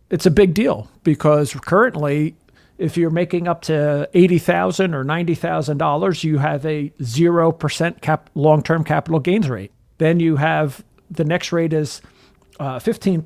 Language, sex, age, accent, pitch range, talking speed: English, male, 50-69, American, 150-175 Hz, 145 wpm